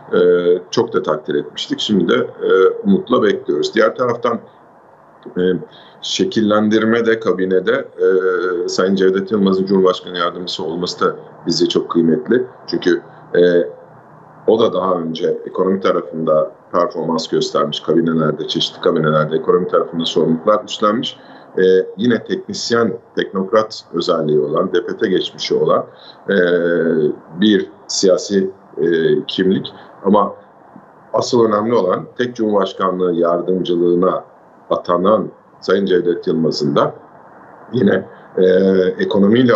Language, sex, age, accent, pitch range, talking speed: Turkish, male, 50-69, native, 90-115 Hz, 110 wpm